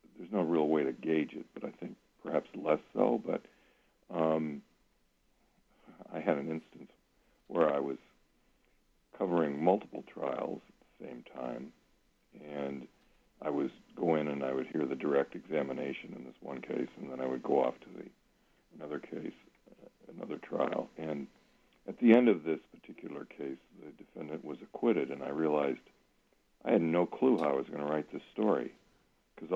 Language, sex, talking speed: English, male, 175 wpm